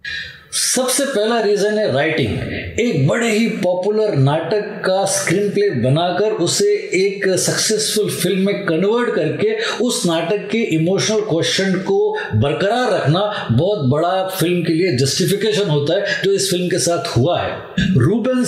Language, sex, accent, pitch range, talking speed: Hindi, male, native, 165-210 Hz, 145 wpm